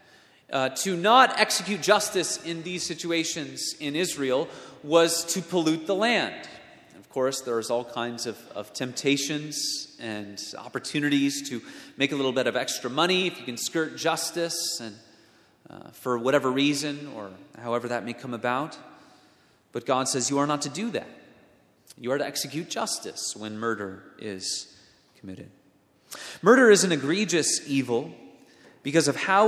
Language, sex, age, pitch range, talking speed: English, male, 30-49, 130-170 Hz, 155 wpm